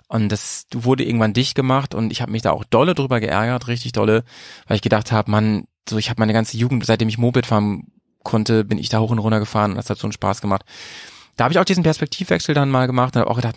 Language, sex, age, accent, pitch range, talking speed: German, male, 30-49, German, 110-140 Hz, 265 wpm